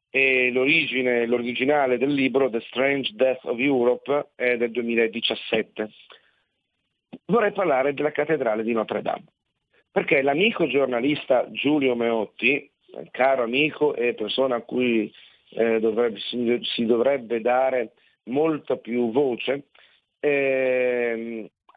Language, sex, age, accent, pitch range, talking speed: Italian, male, 50-69, native, 115-145 Hz, 110 wpm